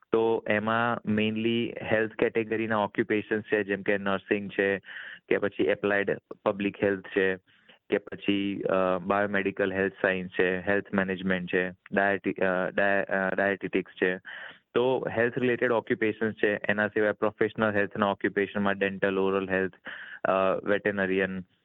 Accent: native